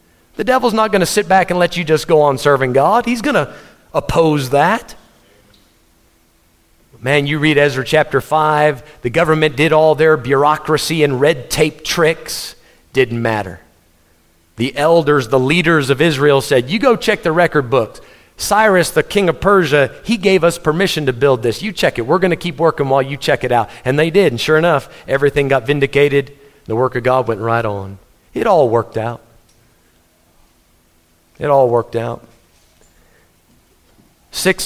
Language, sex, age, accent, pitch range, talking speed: English, male, 40-59, American, 115-185 Hz, 170 wpm